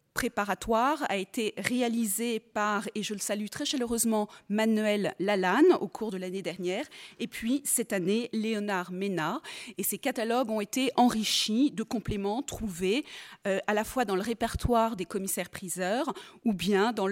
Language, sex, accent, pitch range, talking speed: French, female, French, 200-265 Hz, 160 wpm